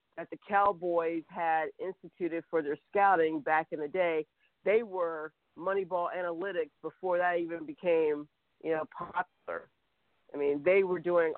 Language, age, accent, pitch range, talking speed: English, 40-59, American, 160-185 Hz, 150 wpm